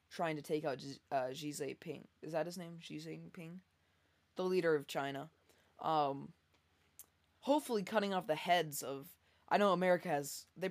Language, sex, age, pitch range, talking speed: English, female, 20-39, 140-175 Hz, 165 wpm